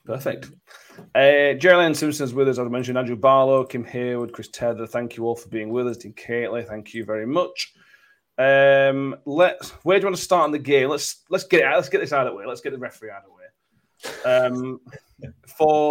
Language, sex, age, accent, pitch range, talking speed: English, male, 30-49, British, 115-150 Hz, 225 wpm